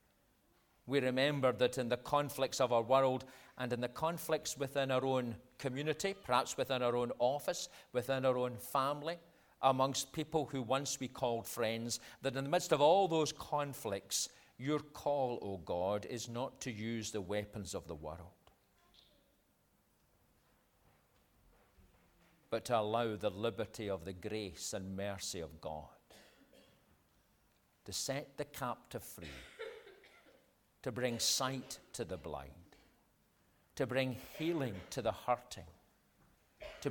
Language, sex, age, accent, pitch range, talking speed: English, male, 40-59, British, 100-135 Hz, 135 wpm